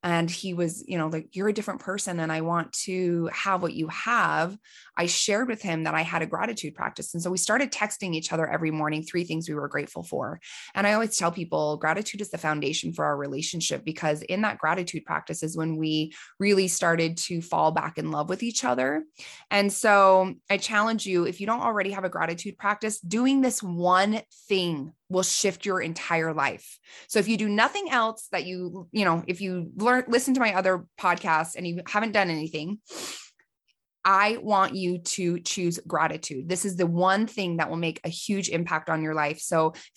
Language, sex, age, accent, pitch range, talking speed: English, female, 20-39, American, 160-200 Hz, 210 wpm